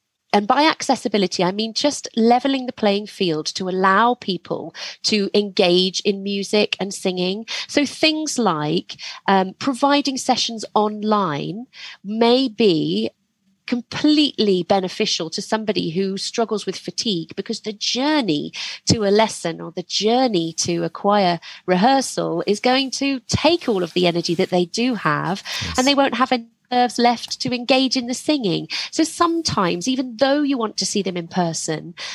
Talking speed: 155 wpm